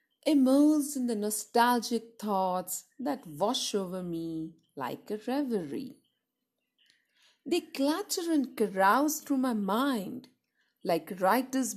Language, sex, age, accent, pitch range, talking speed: Hindi, female, 50-69, native, 215-275 Hz, 105 wpm